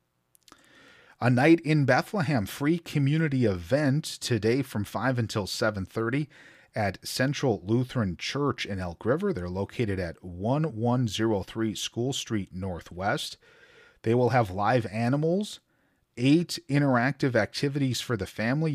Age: 40-59